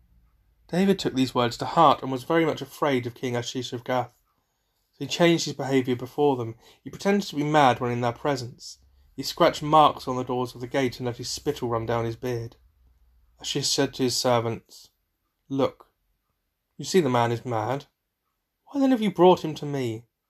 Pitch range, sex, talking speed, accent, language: 120-145 Hz, male, 205 wpm, British, English